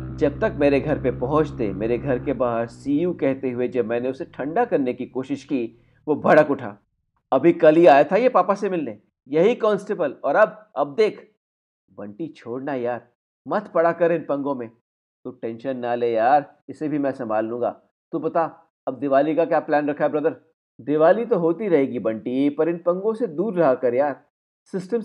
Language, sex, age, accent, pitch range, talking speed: Hindi, male, 50-69, native, 135-230 Hz, 195 wpm